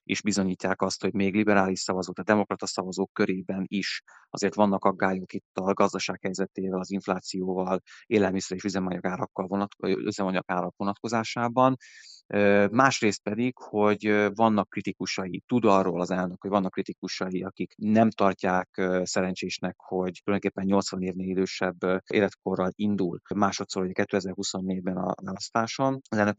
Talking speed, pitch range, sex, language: 125 wpm, 95-105 Hz, male, Hungarian